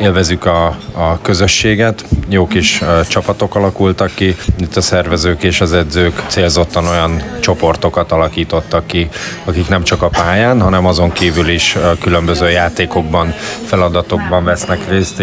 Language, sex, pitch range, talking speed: Hungarian, male, 85-100 Hz, 135 wpm